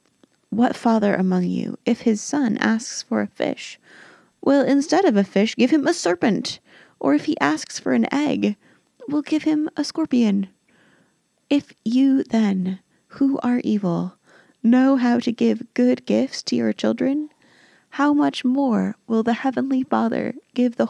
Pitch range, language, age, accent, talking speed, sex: 220-280 Hz, English, 20-39, American, 160 wpm, female